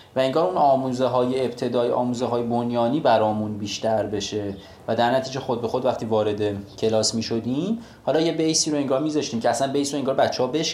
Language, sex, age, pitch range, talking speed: Persian, male, 30-49, 115-150 Hz, 200 wpm